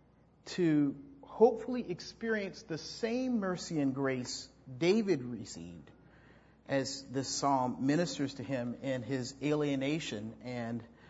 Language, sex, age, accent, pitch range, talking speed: English, male, 40-59, American, 125-170 Hz, 110 wpm